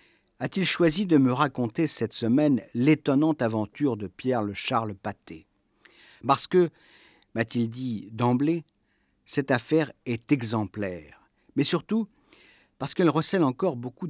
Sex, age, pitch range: male, 50-69, 110-145 Hz